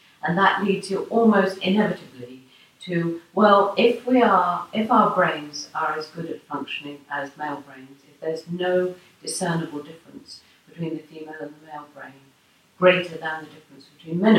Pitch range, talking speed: 145-195 Hz, 165 wpm